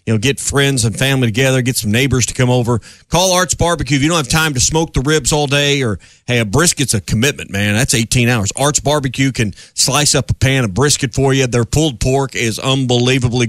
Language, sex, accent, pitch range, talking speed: English, male, American, 120-145 Hz, 235 wpm